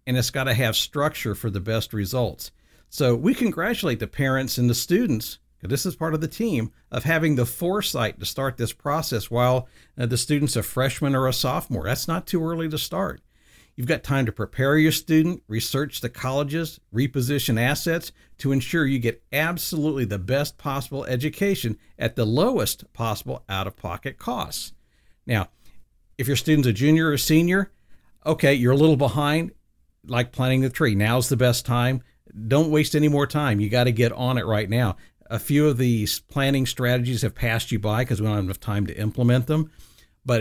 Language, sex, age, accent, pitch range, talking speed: English, male, 50-69, American, 110-145 Hz, 190 wpm